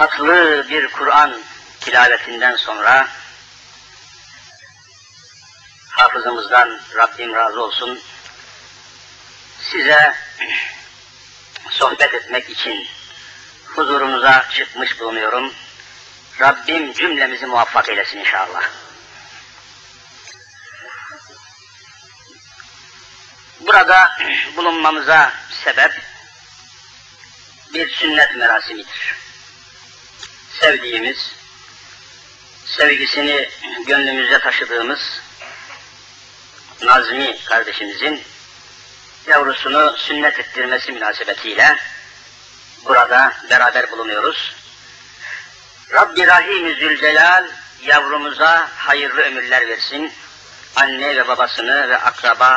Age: 50-69